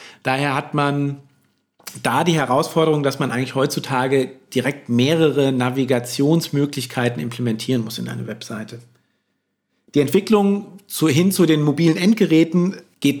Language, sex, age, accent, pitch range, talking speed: German, male, 50-69, German, 130-170 Hz, 120 wpm